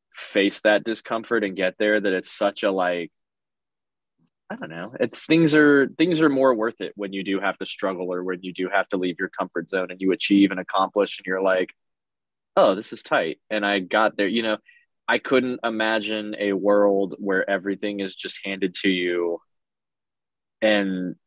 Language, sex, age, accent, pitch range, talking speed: English, male, 20-39, American, 95-110 Hz, 195 wpm